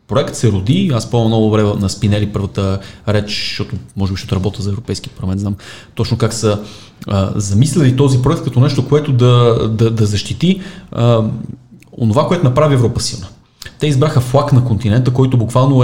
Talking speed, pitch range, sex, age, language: 170 wpm, 105-130 Hz, male, 30-49, Bulgarian